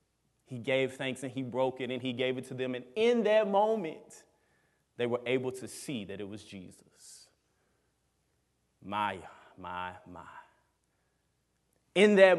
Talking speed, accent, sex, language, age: 150 wpm, American, male, English, 30-49